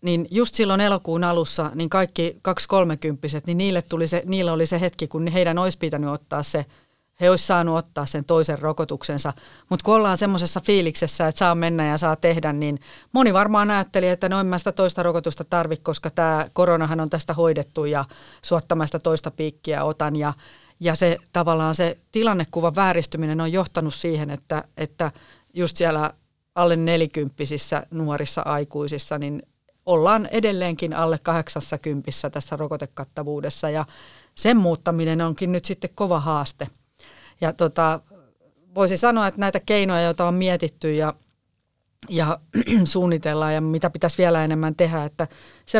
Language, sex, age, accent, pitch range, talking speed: Finnish, female, 40-59, native, 155-180 Hz, 155 wpm